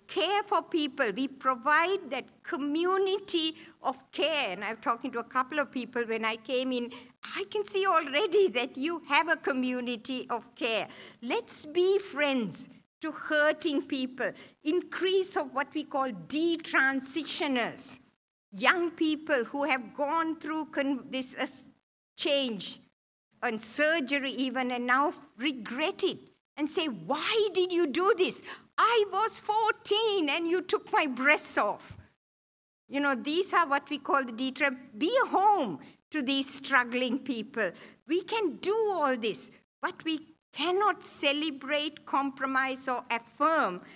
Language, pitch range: English, 250-330 Hz